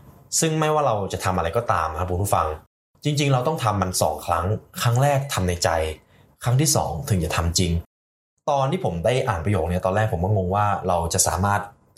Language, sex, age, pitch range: Thai, male, 20-39, 85-120 Hz